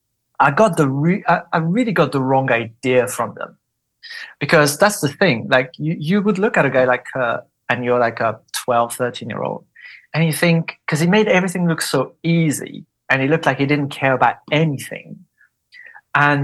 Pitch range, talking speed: 125-165 Hz, 200 wpm